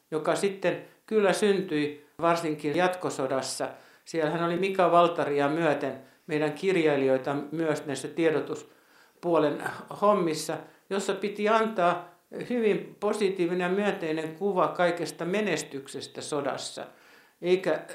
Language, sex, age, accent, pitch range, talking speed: Finnish, male, 60-79, native, 150-185 Hz, 95 wpm